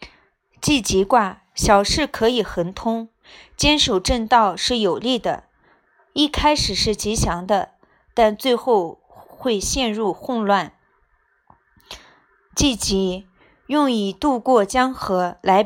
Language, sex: Chinese, female